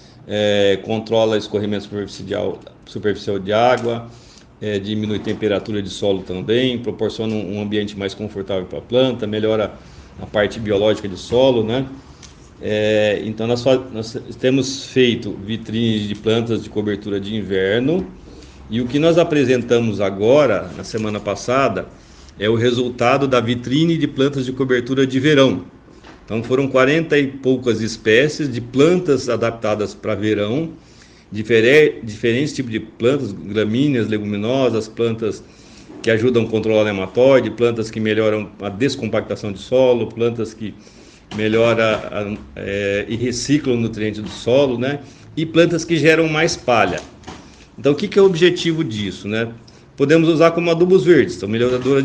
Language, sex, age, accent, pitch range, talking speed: Portuguese, male, 50-69, Brazilian, 105-130 Hz, 145 wpm